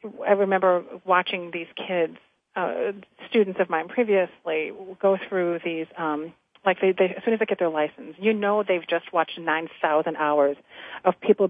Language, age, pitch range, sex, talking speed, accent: English, 40-59, 165-210 Hz, female, 160 wpm, American